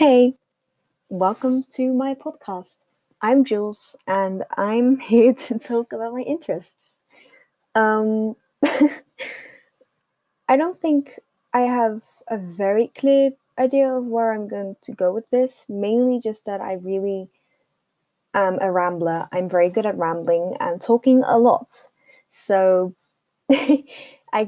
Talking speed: 125 wpm